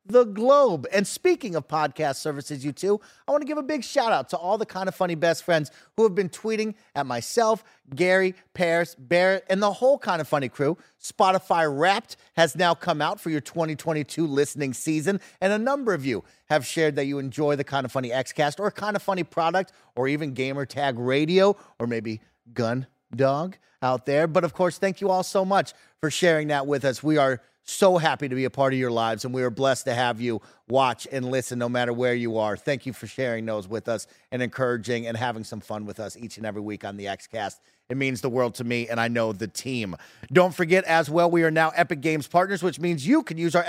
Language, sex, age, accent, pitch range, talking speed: English, male, 30-49, American, 130-190 Hz, 235 wpm